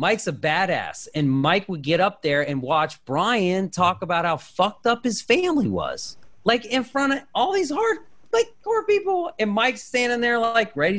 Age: 30-49